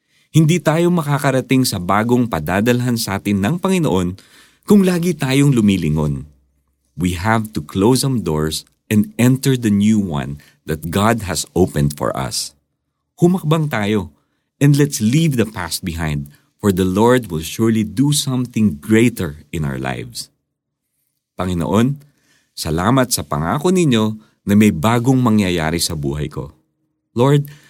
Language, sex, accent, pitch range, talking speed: Filipino, male, native, 90-140 Hz, 135 wpm